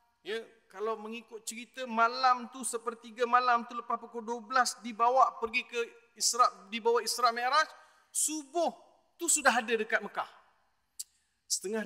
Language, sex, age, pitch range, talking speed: Malay, male, 40-59, 205-250 Hz, 135 wpm